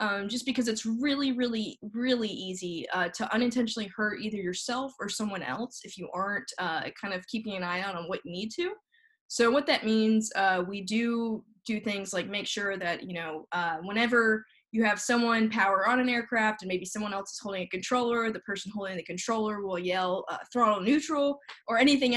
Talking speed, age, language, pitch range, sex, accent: 205 wpm, 10-29, English, 190-245 Hz, female, American